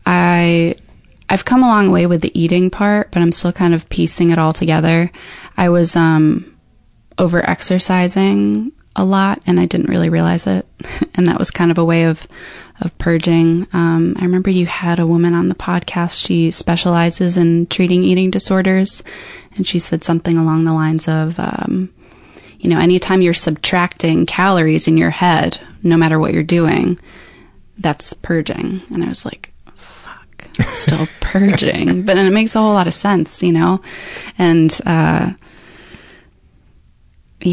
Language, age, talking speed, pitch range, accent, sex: English, 20-39, 160 wpm, 160-180 Hz, American, female